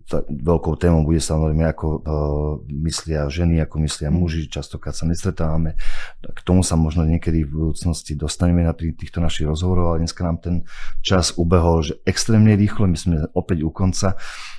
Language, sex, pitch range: Slovak, male, 75-85 Hz